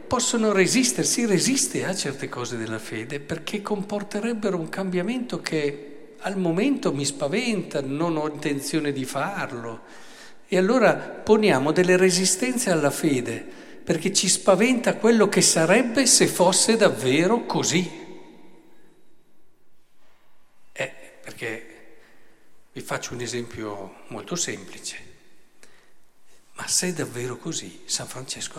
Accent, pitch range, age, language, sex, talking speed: native, 140-210 Hz, 50-69, Italian, male, 115 wpm